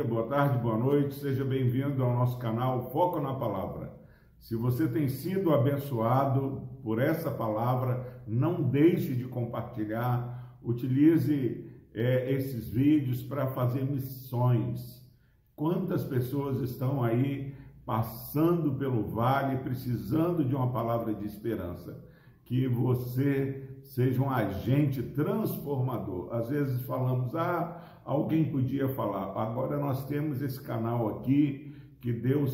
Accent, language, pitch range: Brazilian, Portuguese, 125-155 Hz